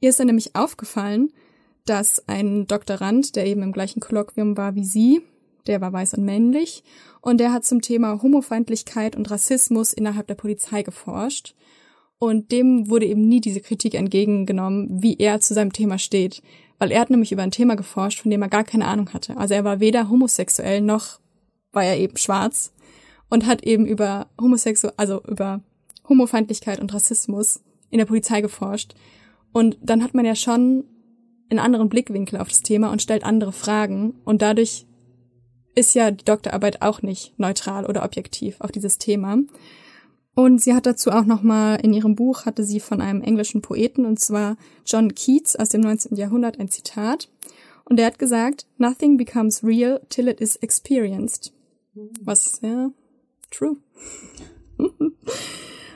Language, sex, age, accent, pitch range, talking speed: German, female, 20-39, German, 205-240 Hz, 165 wpm